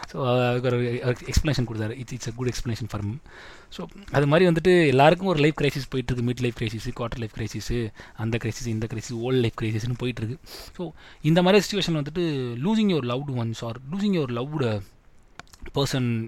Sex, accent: male, native